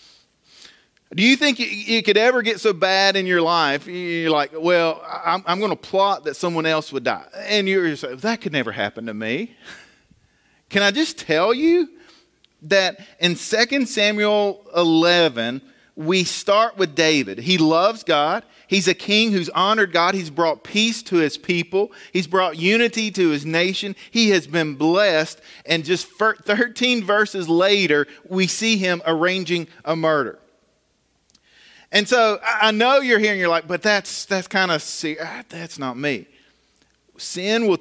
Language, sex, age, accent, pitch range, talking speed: English, male, 40-59, American, 160-210 Hz, 165 wpm